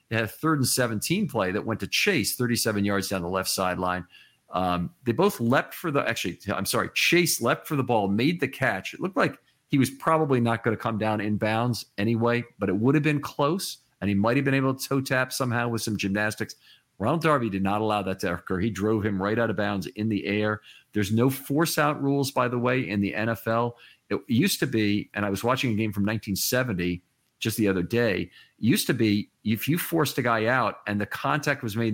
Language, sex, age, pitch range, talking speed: English, male, 40-59, 100-125 Hz, 235 wpm